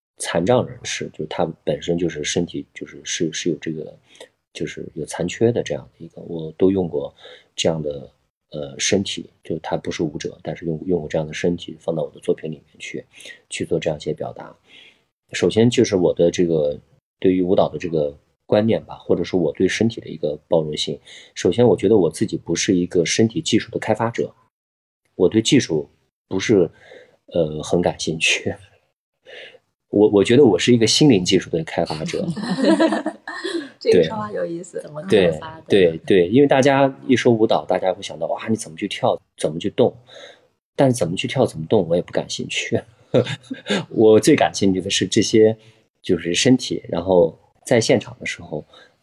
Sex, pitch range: male, 85-115 Hz